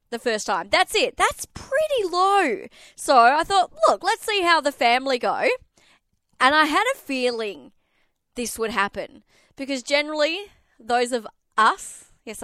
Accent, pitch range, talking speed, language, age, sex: Australian, 230-335 Hz, 155 wpm, English, 20-39, female